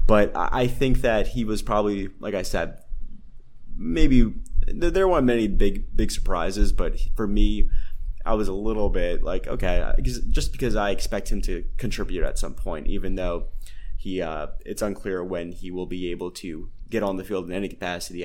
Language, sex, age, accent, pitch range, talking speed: English, male, 20-39, American, 90-110 Hz, 185 wpm